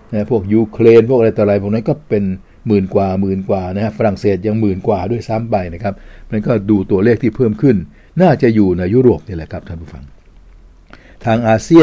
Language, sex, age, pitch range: Thai, male, 60-79, 95-120 Hz